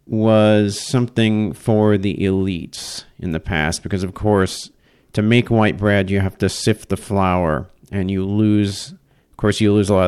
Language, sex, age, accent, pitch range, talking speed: English, male, 50-69, American, 95-110 Hz, 180 wpm